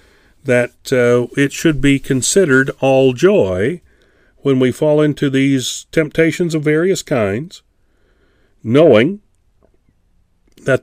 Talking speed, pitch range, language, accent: 105 wpm, 120-165 Hz, English, American